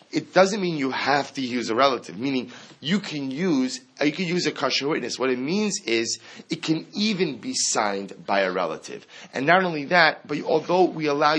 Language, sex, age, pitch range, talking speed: English, male, 30-49, 125-165 Hz, 205 wpm